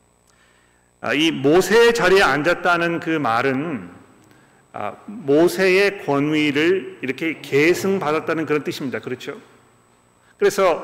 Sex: male